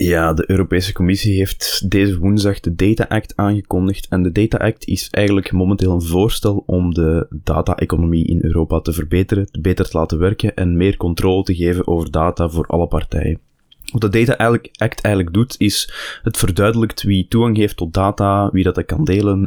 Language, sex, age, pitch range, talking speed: Dutch, male, 20-39, 85-100 Hz, 185 wpm